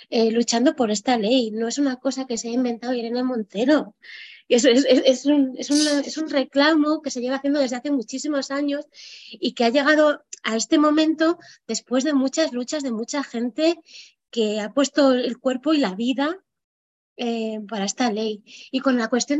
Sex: female